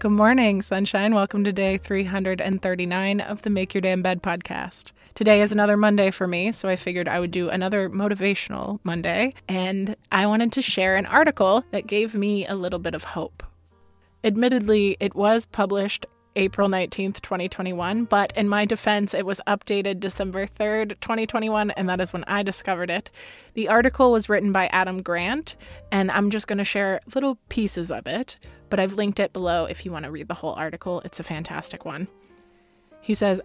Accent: American